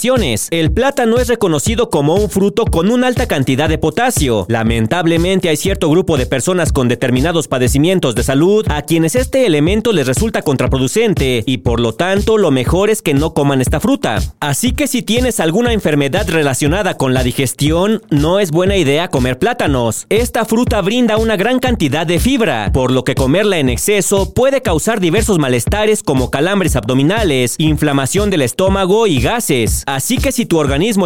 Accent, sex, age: Mexican, male, 40-59